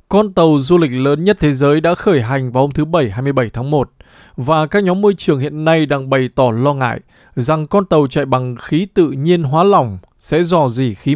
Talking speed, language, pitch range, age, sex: 235 wpm, Vietnamese, 130-175 Hz, 20-39, male